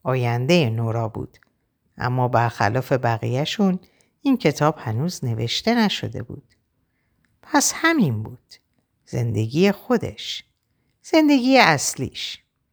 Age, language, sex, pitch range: 50-69, Persian, female, 125-185 Hz